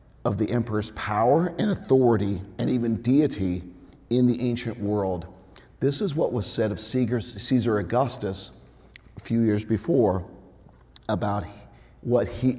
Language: English